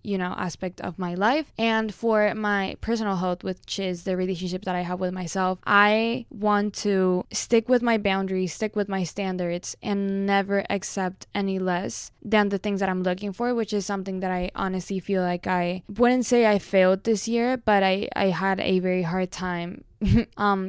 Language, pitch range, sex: English, 190-220 Hz, female